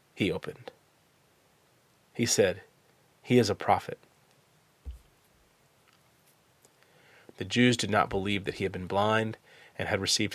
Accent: American